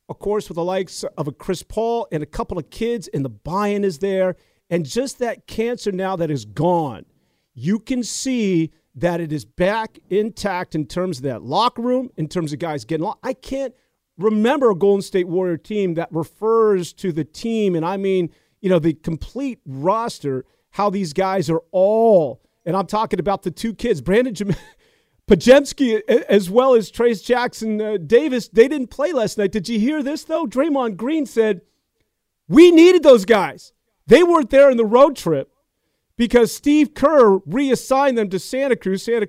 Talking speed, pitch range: 190 wpm, 175-230 Hz